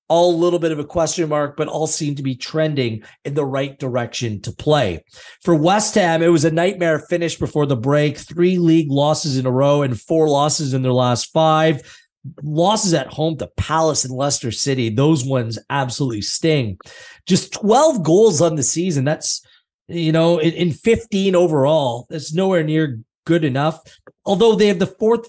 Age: 30-49